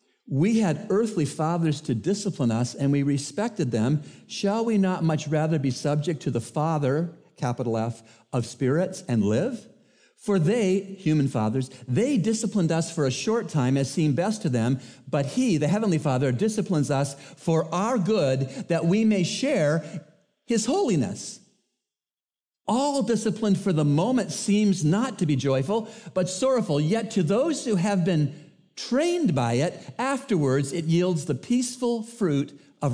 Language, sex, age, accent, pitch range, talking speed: English, male, 50-69, American, 135-200 Hz, 160 wpm